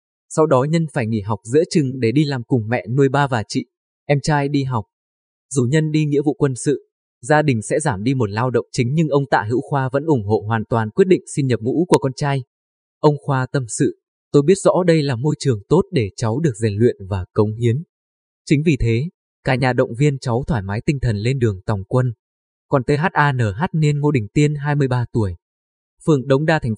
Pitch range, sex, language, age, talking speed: 115-150 Hz, male, Vietnamese, 20-39, 230 wpm